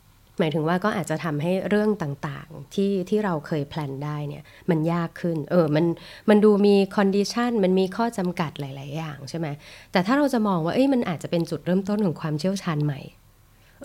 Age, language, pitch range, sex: 20-39, Thai, 150-190 Hz, female